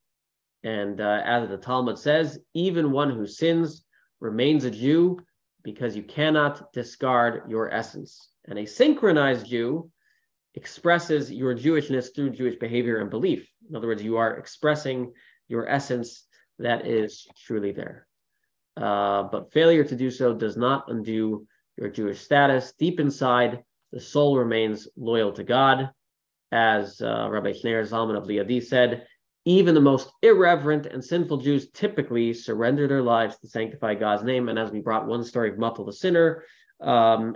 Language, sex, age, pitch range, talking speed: English, male, 20-39, 110-145 Hz, 155 wpm